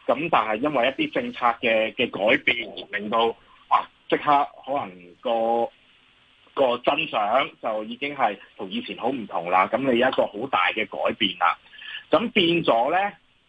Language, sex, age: Chinese, male, 30-49